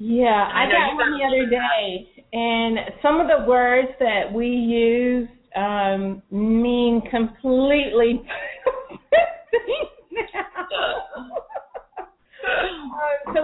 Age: 40-59